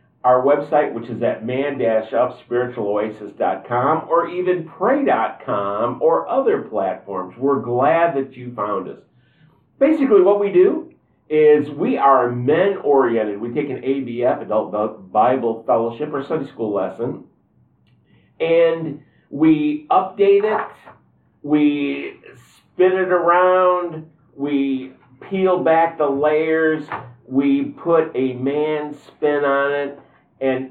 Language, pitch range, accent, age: English, 120-165 Hz, American, 50-69